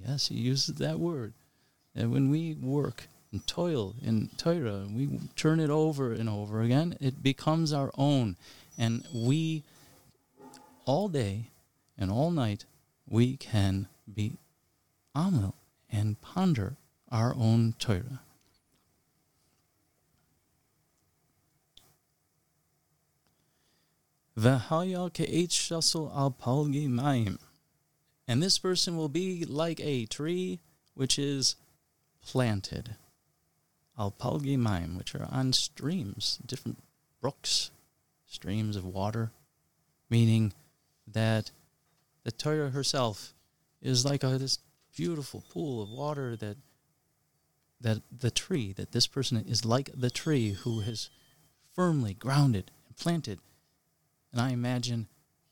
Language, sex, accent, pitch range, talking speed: English, male, American, 115-150 Hz, 110 wpm